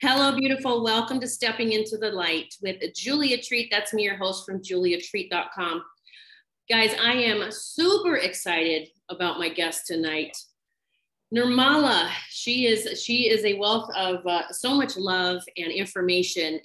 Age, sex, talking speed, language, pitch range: 30-49, female, 145 wpm, English, 180-245 Hz